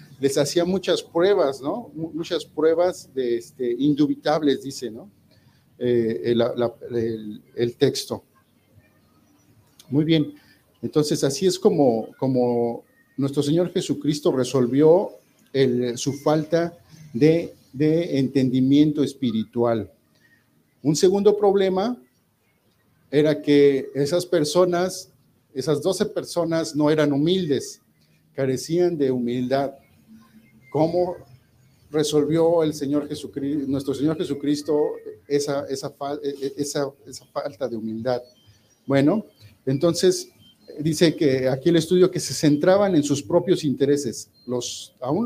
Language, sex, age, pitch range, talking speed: Spanish, male, 50-69, 130-170 Hz, 110 wpm